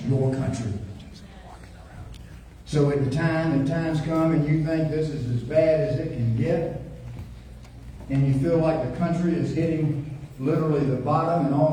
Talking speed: 165 wpm